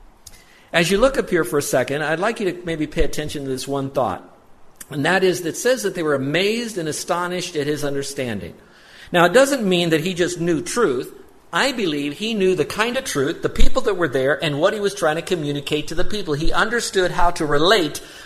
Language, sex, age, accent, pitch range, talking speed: English, male, 50-69, American, 140-195 Hz, 230 wpm